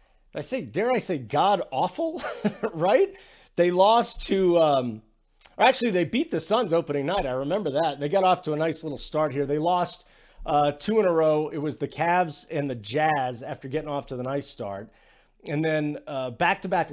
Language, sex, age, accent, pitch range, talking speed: English, male, 40-59, American, 135-195 Hz, 200 wpm